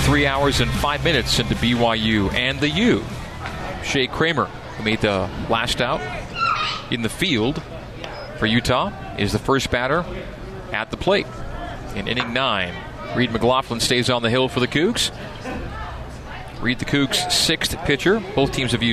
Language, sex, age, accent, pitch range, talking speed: English, male, 40-59, American, 110-135 Hz, 155 wpm